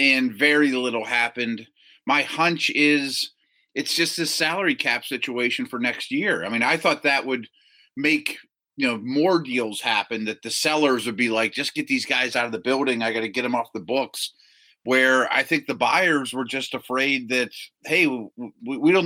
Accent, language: American, English